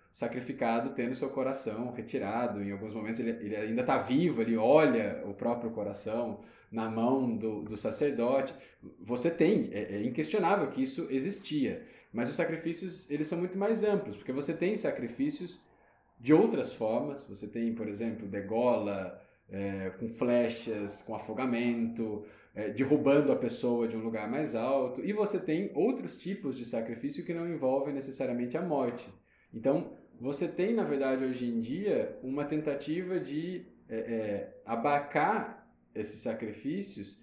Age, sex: 20-39, male